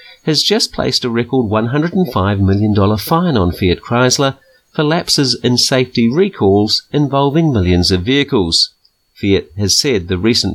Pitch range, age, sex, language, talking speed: 100-150 Hz, 40-59, male, English, 140 wpm